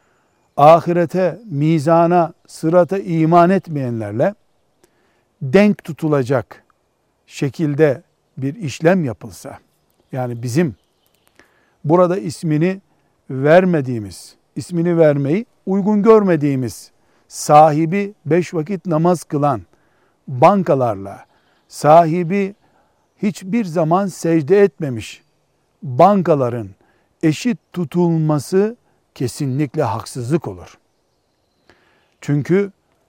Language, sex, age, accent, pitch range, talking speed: Turkish, male, 60-79, native, 145-185 Hz, 70 wpm